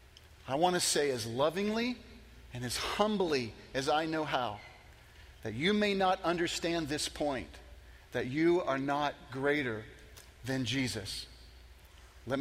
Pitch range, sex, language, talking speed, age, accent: 125-195 Hz, male, English, 135 wpm, 40-59, American